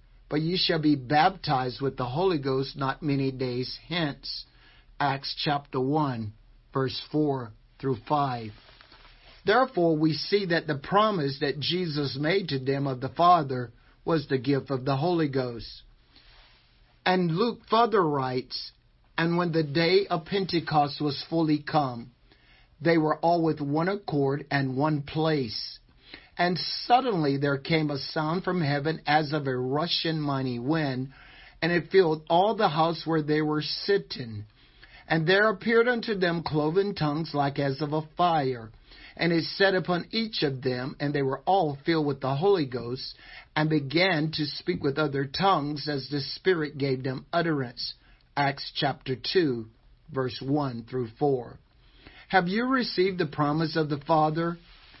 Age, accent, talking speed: 50-69, American, 155 wpm